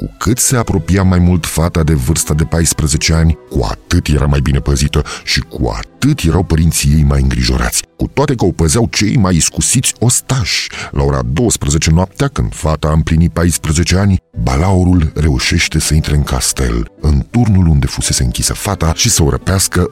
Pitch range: 75-95 Hz